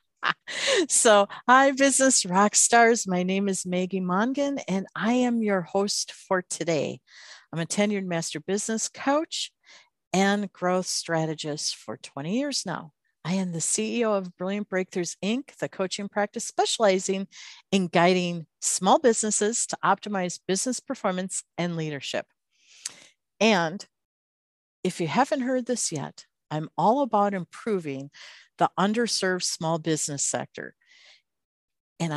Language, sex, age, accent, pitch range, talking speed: English, female, 50-69, American, 165-225 Hz, 130 wpm